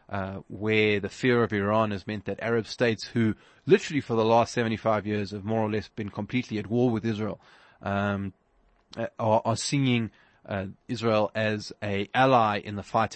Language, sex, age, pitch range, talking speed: English, male, 20-39, 105-125 Hz, 180 wpm